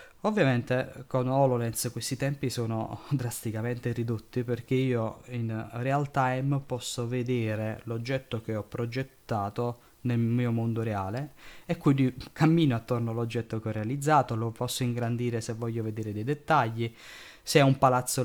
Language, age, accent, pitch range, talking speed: Italian, 20-39, native, 115-130 Hz, 140 wpm